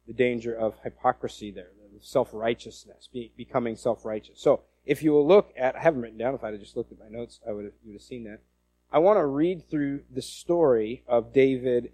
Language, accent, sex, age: English, American, male, 40-59